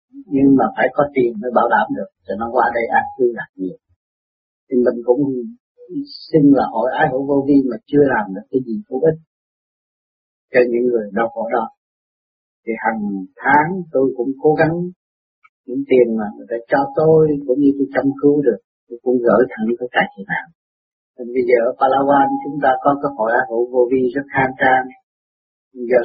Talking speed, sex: 200 wpm, male